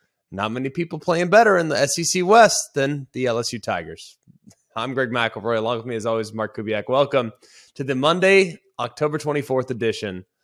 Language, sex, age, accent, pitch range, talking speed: English, male, 20-39, American, 115-170 Hz, 180 wpm